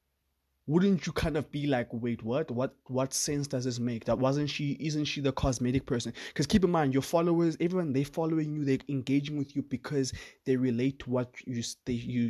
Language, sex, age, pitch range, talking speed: English, male, 20-39, 120-140 Hz, 210 wpm